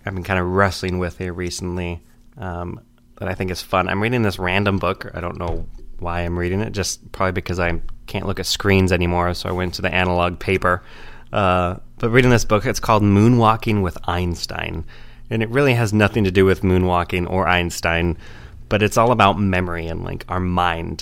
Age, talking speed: 20-39, 205 wpm